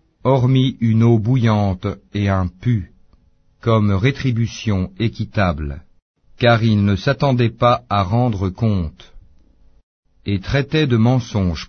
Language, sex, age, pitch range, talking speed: French, male, 50-69, 95-125 Hz, 115 wpm